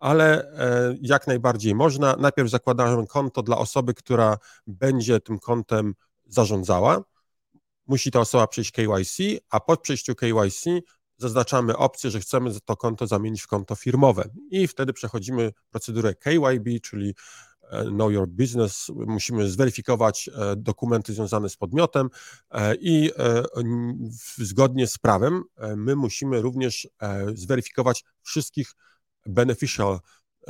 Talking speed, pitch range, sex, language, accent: 115 wpm, 110-130 Hz, male, Polish, native